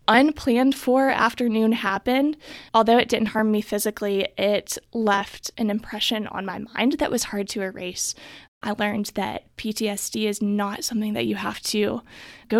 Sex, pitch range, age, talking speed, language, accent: female, 210-245 Hz, 20-39, 160 wpm, English, American